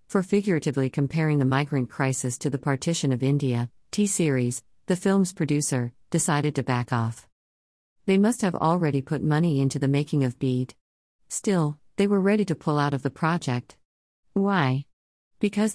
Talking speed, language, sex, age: 160 wpm, English, female, 50-69